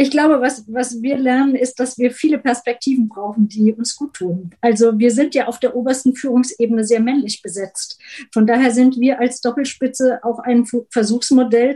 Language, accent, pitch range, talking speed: German, German, 230-260 Hz, 185 wpm